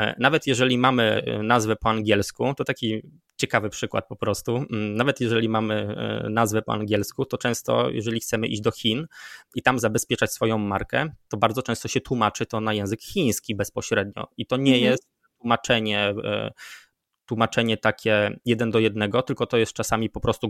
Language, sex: Polish, male